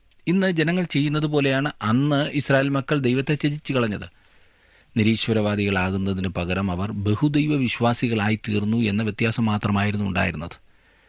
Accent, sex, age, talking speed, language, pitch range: native, male, 40-59, 95 wpm, Malayalam, 95-130 Hz